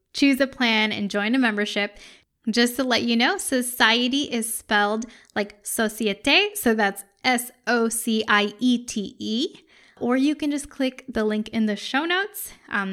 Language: English